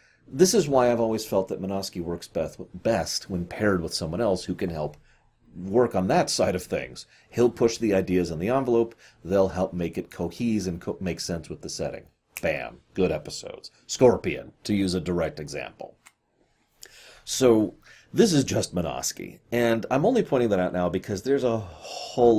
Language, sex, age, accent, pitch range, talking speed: English, male, 30-49, American, 85-115 Hz, 180 wpm